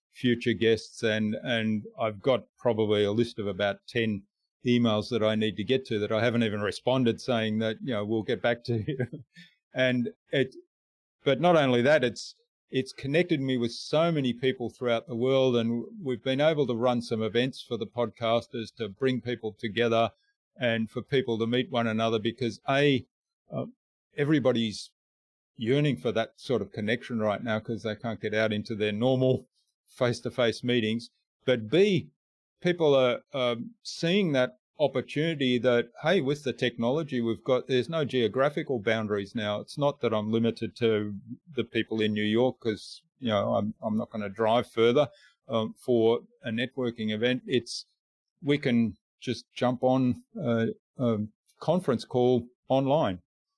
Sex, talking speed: male, 170 wpm